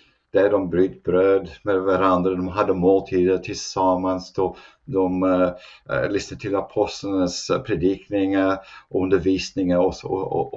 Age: 50-69